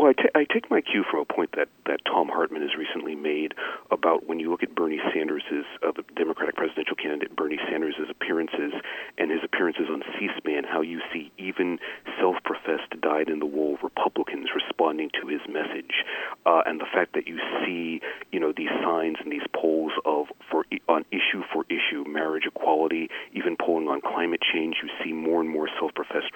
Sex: male